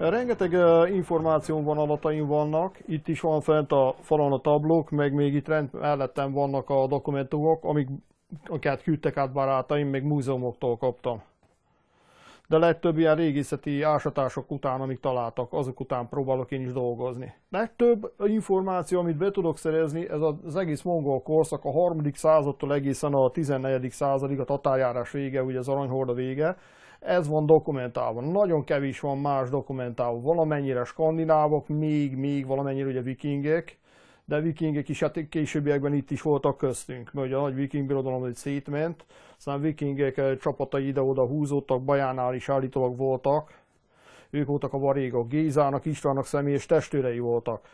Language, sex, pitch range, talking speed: Hungarian, male, 135-155 Hz, 145 wpm